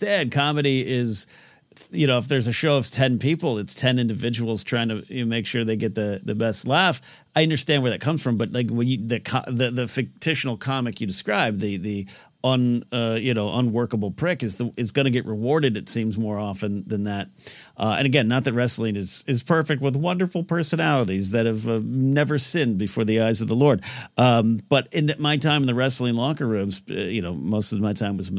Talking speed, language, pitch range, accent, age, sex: 220 wpm, English, 110-140 Hz, American, 50-69, male